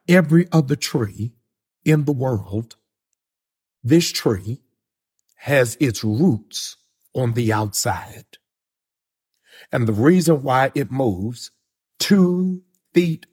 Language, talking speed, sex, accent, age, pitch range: English, 100 wpm, male, American, 60-79, 110-150 Hz